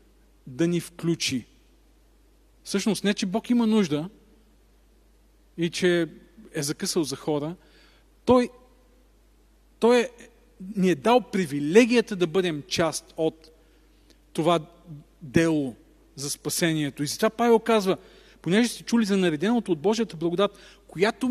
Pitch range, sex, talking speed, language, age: 155-205 Hz, male, 120 wpm, Bulgarian, 40-59